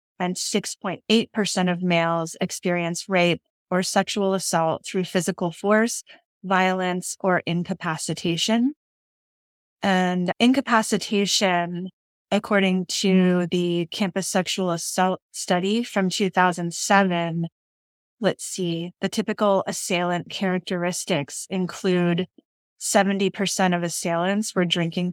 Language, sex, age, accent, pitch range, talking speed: English, female, 20-39, American, 170-195 Hz, 90 wpm